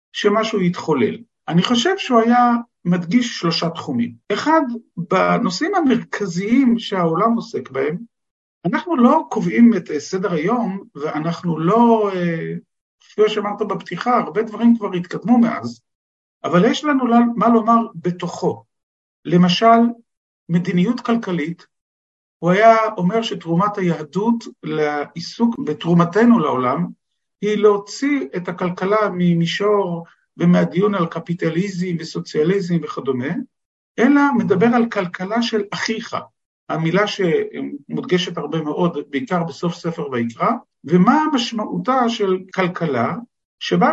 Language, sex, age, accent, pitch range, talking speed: Hebrew, male, 50-69, native, 170-230 Hz, 105 wpm